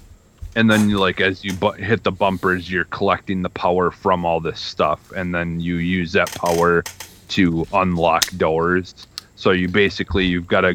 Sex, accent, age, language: male, American, 30-49, English